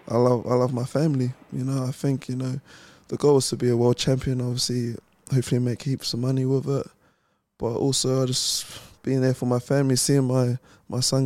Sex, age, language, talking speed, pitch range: male, 20-39, English, 220 wpm, 120-135 Hz